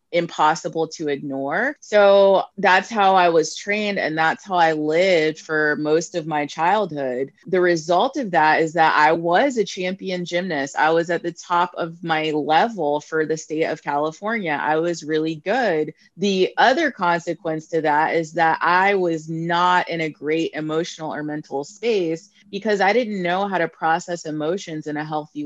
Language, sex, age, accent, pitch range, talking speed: English, female, 30-49, American, 155-195 Hz, 175 wpm